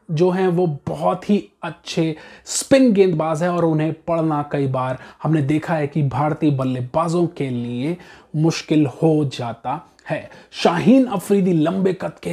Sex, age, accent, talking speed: male, 30-49, native, 150 wpm